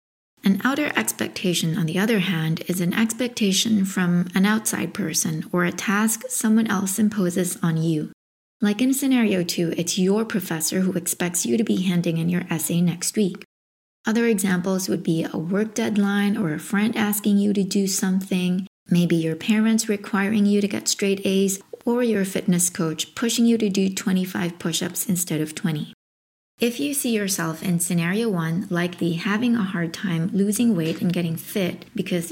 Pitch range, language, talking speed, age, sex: 175-215 Hz, English, 175 wpm, 20-39, female